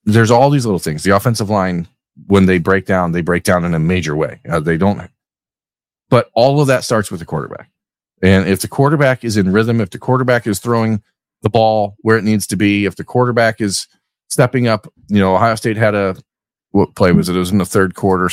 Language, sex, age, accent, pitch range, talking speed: English, male, 40-59, American, 95-115 Hz, 230 wpm